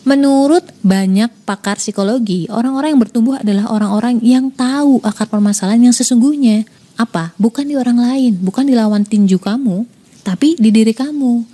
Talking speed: 150 wpm